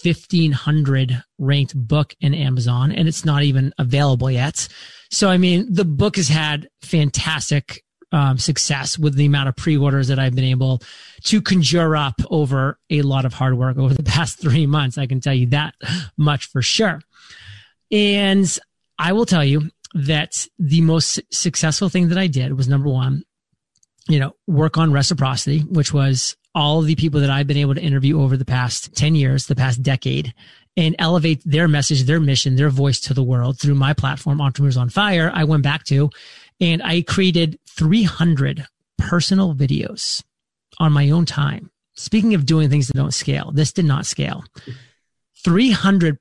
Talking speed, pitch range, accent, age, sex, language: 175 wpm, 135-165 Hz, American, 30-49, male, English